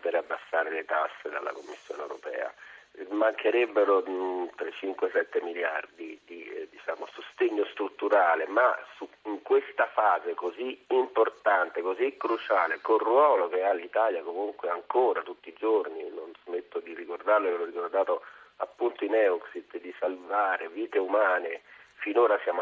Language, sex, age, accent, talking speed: Italian, male, 40-59, native, 125 wpm